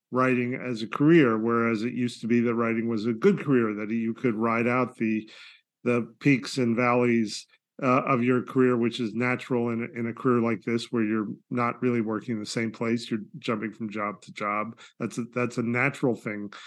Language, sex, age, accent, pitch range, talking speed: English, male, 40-59, American, 115-125 Hz, 215 wpm